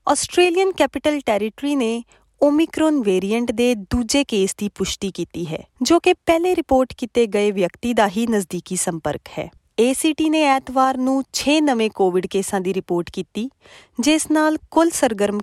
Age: 20-39